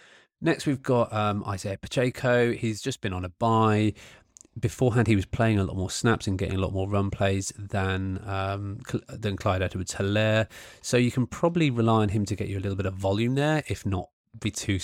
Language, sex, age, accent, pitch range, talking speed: English, male, 20-39, British, 95-115 Hz, 210 wpm